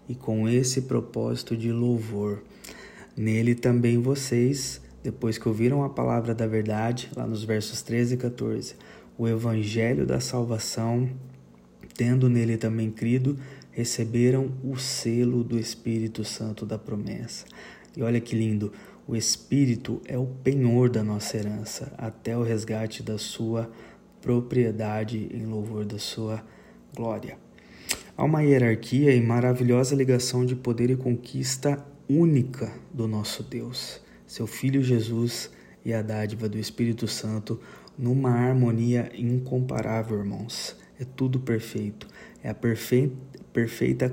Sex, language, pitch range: male, Portuguese, 110-130 Hz